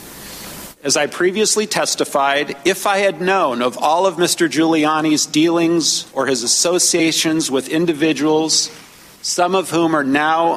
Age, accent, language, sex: 50-69, American, English, male